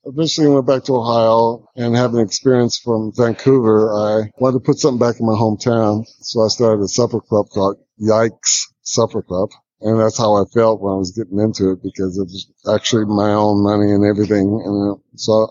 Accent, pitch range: American, 100-120 Hz